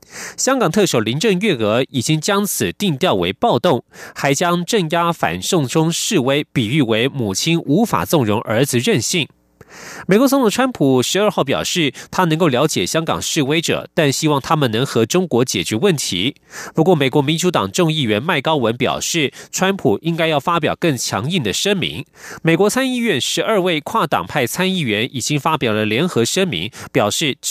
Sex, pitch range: male, 135-185 Hz